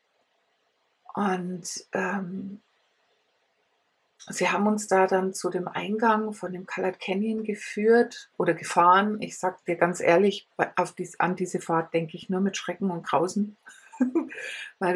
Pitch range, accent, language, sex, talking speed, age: 185-225 Hz, German, English, female, 140 wpm, 60-79